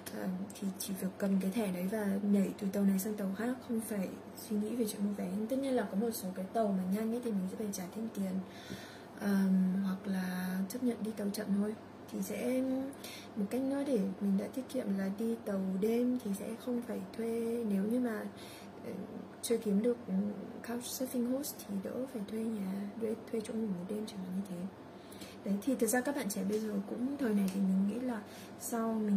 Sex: female